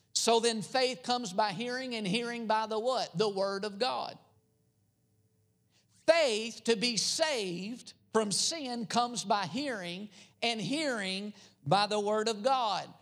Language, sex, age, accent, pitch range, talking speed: English, male, 50-69, American, 180-245 Hz, 145 wpm